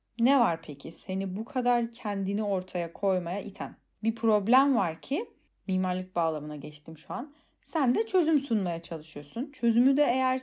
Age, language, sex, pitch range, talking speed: 30-49, Turkish, female, 185-260 Hz, 155 wpm